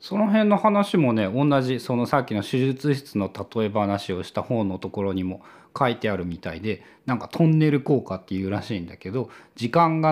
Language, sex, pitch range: Japanese, male, 105-155 Hz